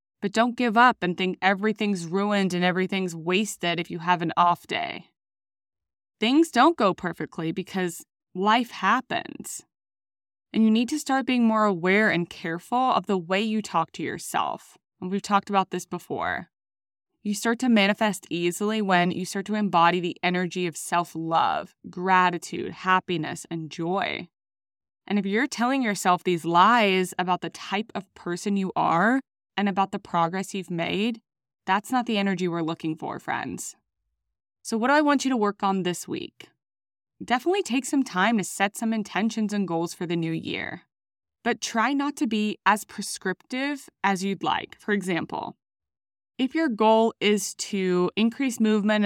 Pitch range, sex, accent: 175-220 Hz, female, American